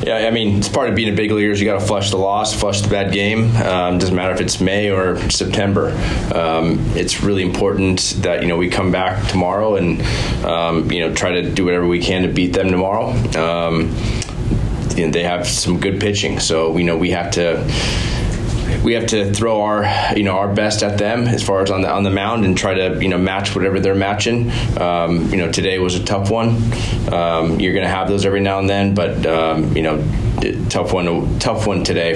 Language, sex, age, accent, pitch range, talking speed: English, male, 20-39, American, 90-105 Hz, 235 wpm